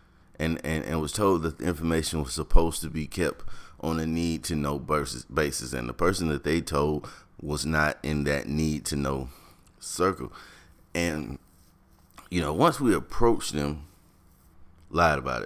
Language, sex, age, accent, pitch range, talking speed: English, male, 30-49, American, 75-90 Hz, 150 wpm